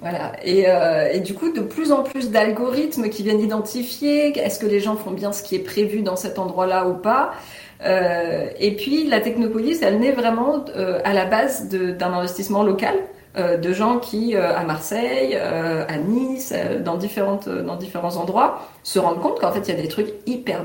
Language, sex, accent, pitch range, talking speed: French, female, French, 175-235 Hz, 210 wpm